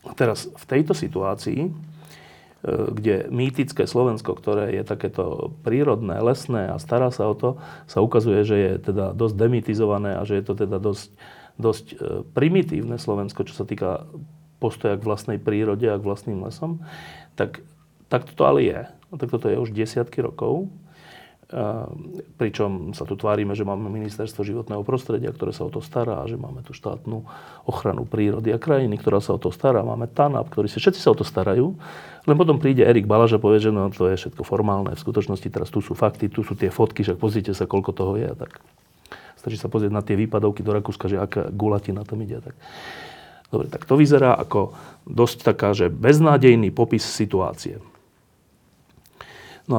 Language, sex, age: Slovak, male, 40-59